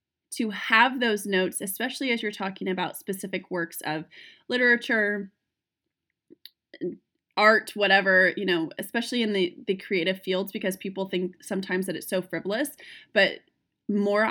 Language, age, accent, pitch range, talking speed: English, 20-39, American, 185-245 Hz, 140 wpm